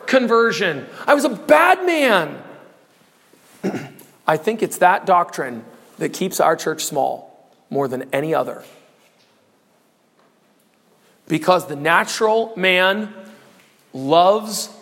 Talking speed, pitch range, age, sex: 100 wpm, 175-255 Hz, 40-59, male